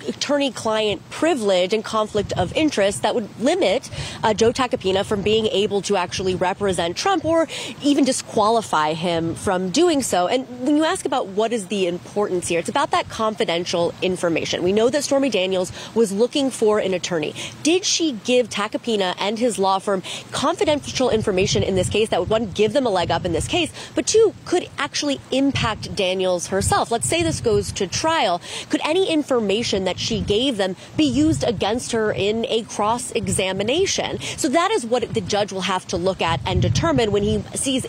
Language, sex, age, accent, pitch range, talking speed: English, female, 30-49, American, 190-275 Hz, 190 wpm